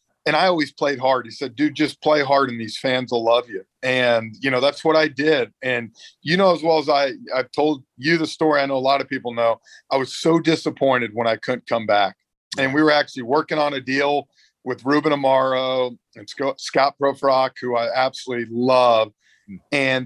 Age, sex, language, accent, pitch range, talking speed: 40-59, male, English, American, 125-155 Hz, 210 wpm